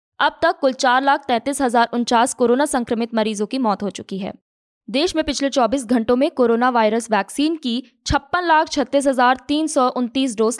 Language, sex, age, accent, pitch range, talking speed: Hindi, female, 20-39, native, 225-280 Hz, 145 wpm